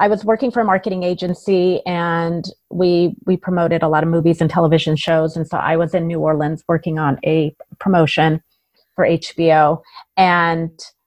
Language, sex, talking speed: English, female, 175 wpm